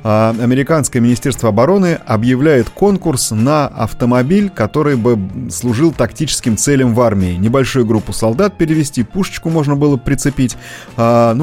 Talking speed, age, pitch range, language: 130 wpm, 30-49, 120-160 Hz, Russian